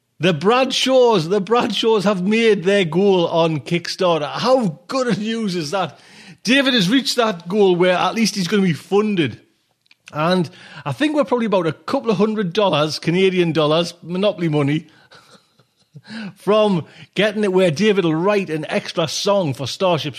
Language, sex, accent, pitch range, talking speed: English, male, British, 135-190 Hz, 165 wpm